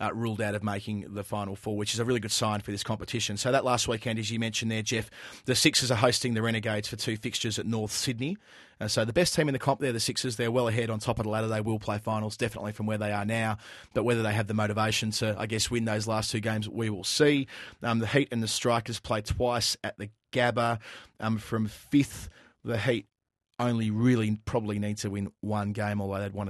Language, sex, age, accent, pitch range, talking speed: English, male, 30-49, Australian, 105-120 Hz, 250 wpm